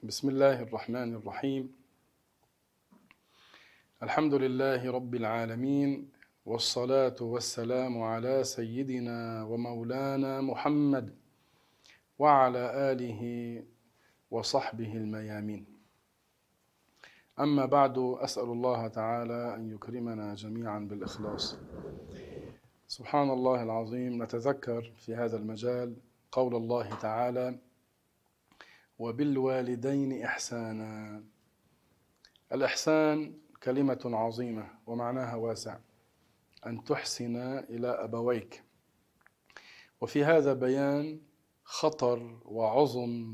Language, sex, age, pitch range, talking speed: Arabic, male, 40-59, 115-135 Hz, 75 wpm